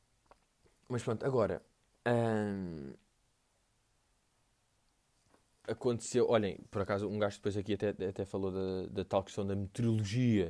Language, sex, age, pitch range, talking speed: Portuguese, male, 20-39, 105-125 Hz, 120 wpm